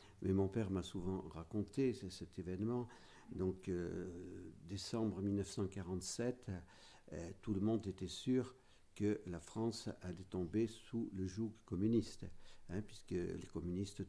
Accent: French